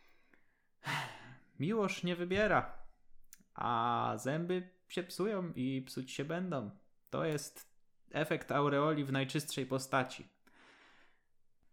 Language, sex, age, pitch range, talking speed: Polish, male, 20-39, 105-135 Hz, 90 wpm